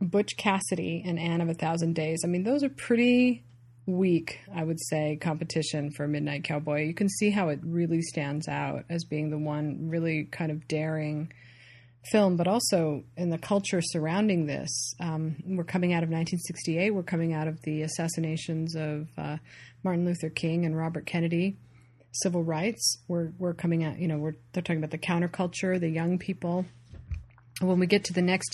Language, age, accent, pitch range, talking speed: English, 30-49, American, 150-180 Hz, 185 wpm